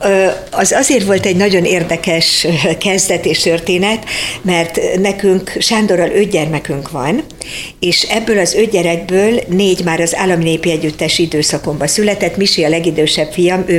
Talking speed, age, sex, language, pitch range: 140 wpm, 60-79, female, Hungarian, 160-190 Hz